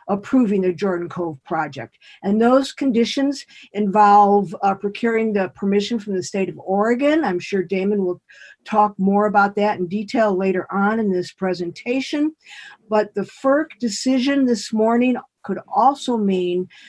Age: 50-69